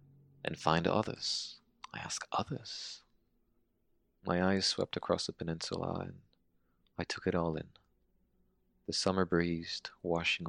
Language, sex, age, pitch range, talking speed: English, male, 30-49, 80-140 Hz, 125 wpm